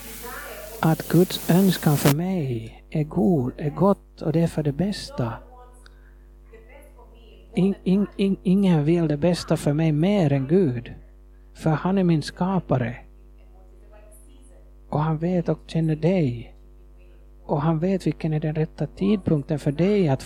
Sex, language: male, Swedish